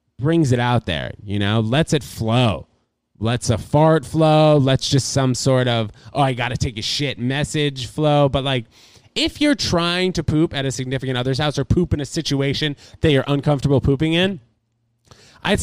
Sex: male